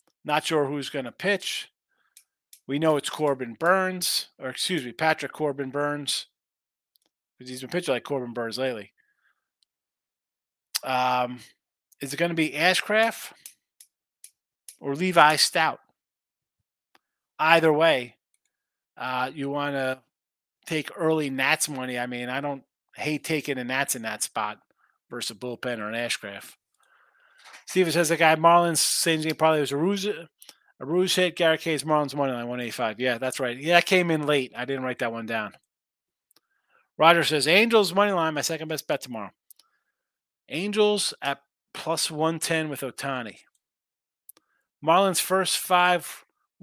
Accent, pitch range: American, 130-175 Hz